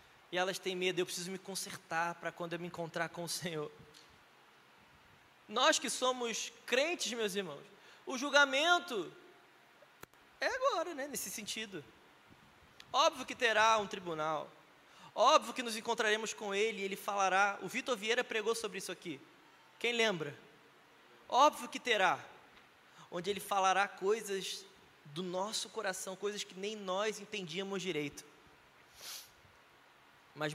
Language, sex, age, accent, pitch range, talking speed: Portuguese, male, 20-39, Brazilian, 155-205 Hz, 135 wpm